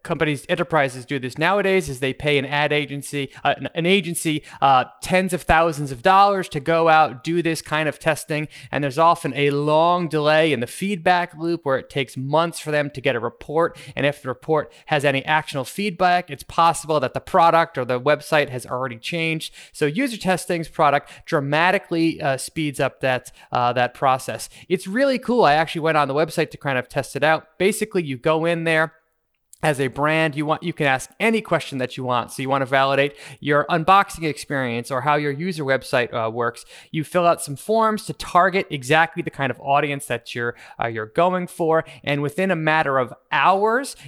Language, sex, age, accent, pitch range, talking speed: English, male, 20-39, American, 140-175 Hz, 205 wpm